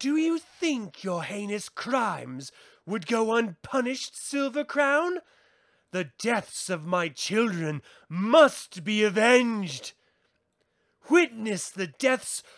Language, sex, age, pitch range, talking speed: English, male, 30-49, 185-295 Hz, 105 wpm